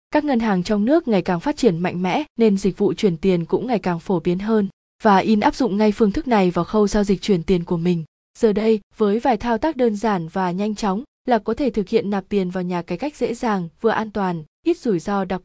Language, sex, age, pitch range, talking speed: Vietnamese, female, 20-39, 190-230 Hz, 270 wpm